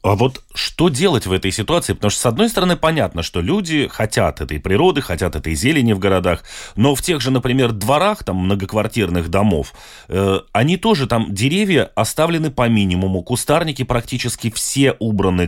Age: 20-39